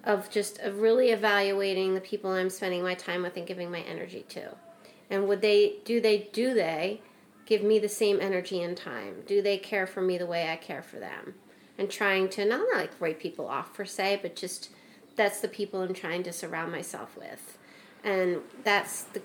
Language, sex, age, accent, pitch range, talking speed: English, female, 30-49, American, 185-210 Hz, 205 wpm